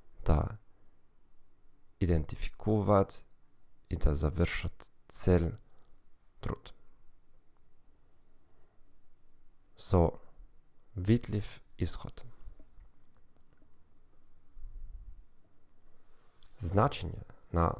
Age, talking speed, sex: 40-59, 45 wpm, male